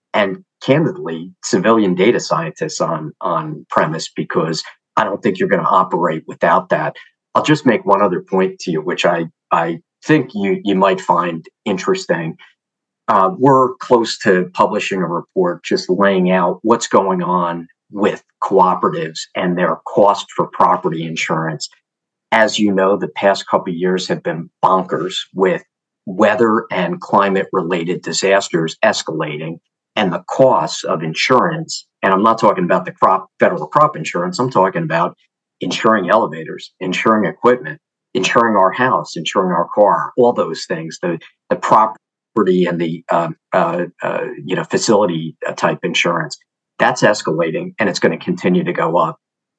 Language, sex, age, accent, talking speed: English, male, 50-69, American, 155 wpm